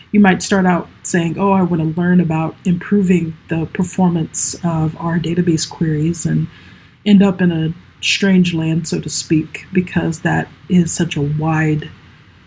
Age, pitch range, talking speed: 30-49, 160-190 Hz, 165 wpm